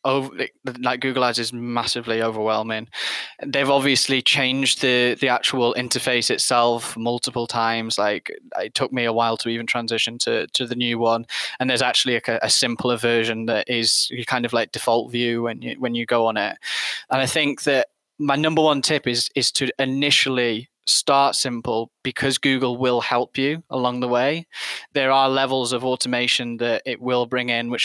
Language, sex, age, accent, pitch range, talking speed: English, male, 10-29, British, 115-130 Hz, 185 wpm